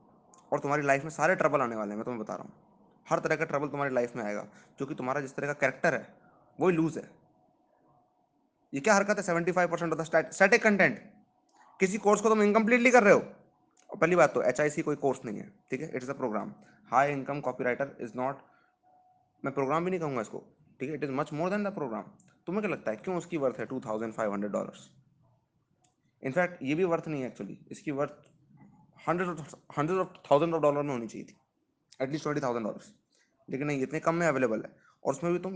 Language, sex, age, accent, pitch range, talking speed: Hindi, male, 20-39, native, 145-195 Hz, 180 wpm